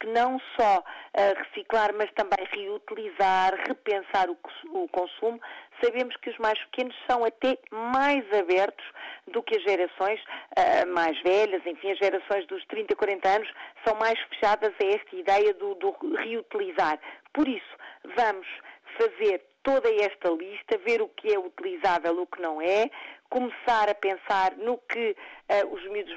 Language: Portuguese